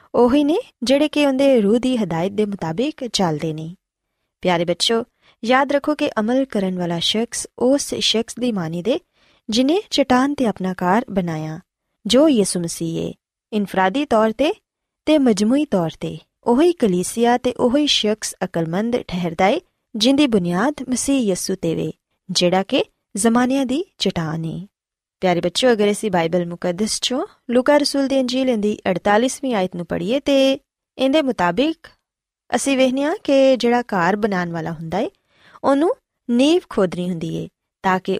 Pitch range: 180-265 Hz